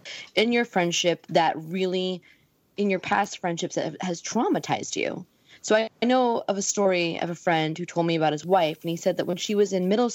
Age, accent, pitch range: 20-39, American, 155-190 Hz